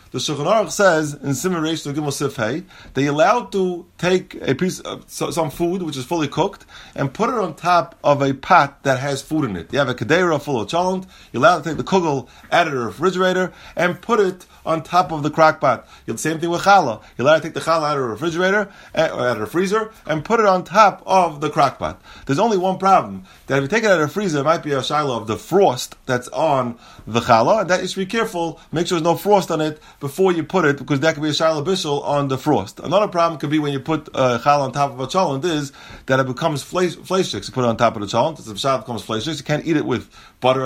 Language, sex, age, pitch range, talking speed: English, male, 30-49, 140-180 Hz, 265 wpm